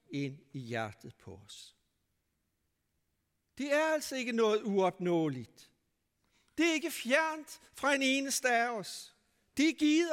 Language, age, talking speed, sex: Danish, 60-79, 135 wpm, male